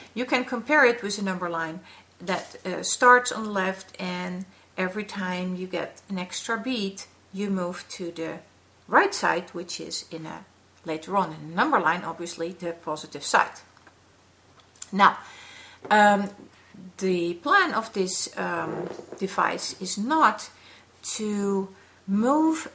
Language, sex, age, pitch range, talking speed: English, female, 50-69, 170-215 Hz, 140 wpm